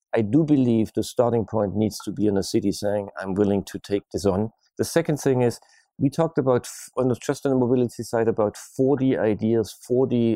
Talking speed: 210 wpm